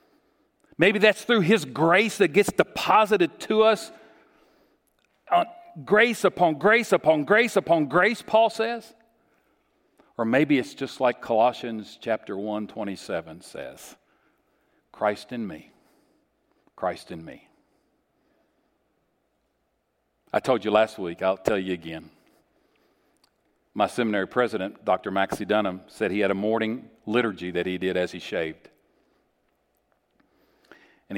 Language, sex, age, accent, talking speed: English, male, 50-69, American, 120 wpm